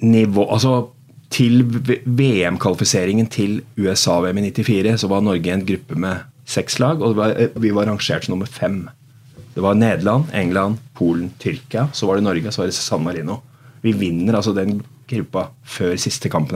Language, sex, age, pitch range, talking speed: English, male, 30-49, 100-135 Hz, 160 wpm